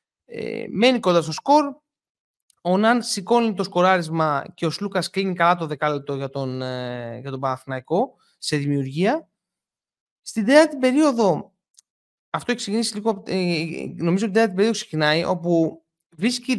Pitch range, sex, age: 160-240 Hz, male, 30-49